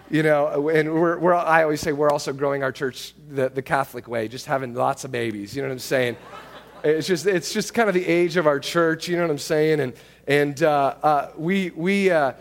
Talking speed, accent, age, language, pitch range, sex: 220 wpm, American, 30-49, English, 150-215 Hz, male